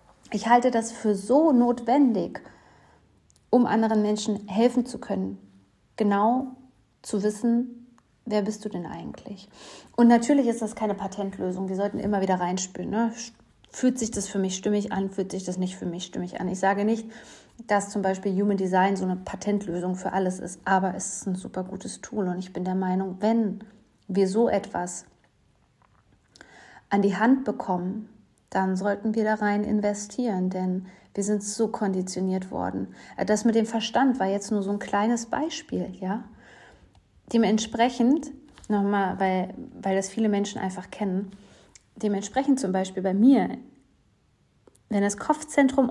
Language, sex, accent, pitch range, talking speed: German, female, German, 190-230 Hz, 160 wpm